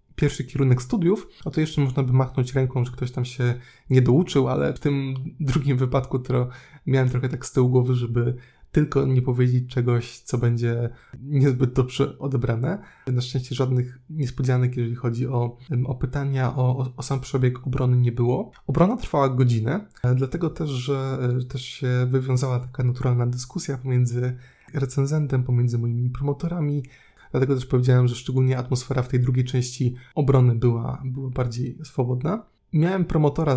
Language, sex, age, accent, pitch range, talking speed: Polish, male, 20-39, native, 125-140 Hz, 160 wpm